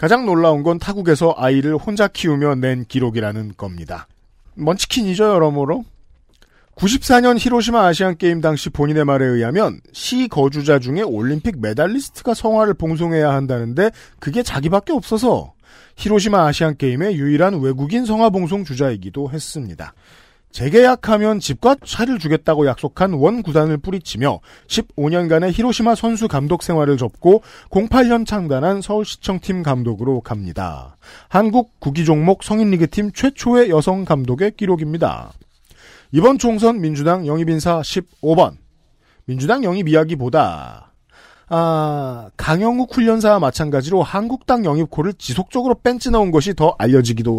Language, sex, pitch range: Korean, male, 140-210 Hz